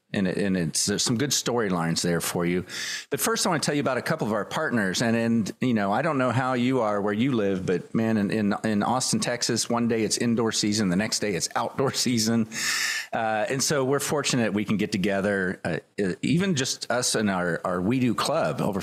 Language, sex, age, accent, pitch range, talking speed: English, male, 40-59, American, 95-120 Hz, 235 wpm